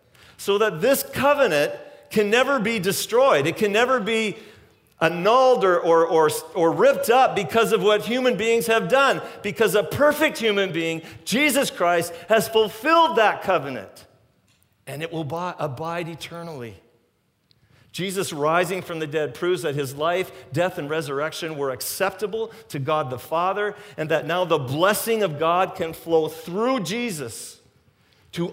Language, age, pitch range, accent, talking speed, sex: English, 50-69, 130-190 Hz, American, 145 wpm, male